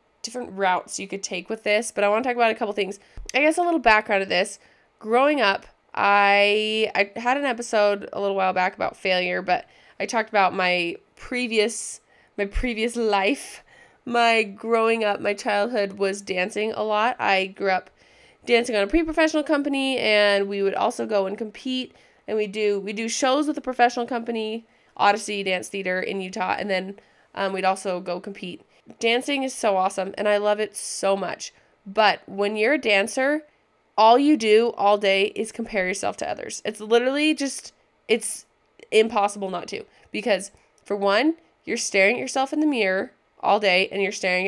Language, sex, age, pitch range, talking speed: English, female, 20-39, 195-235 Hz, 190 wpm